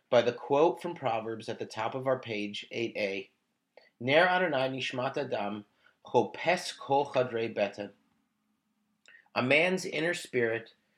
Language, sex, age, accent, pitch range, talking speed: English, male, 30-49, American, 125-170 Hz, 85 wpm